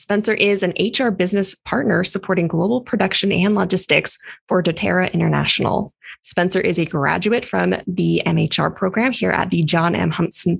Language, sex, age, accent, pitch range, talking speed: English, female, 20-39, American, 175-210 Hz, 160 wpm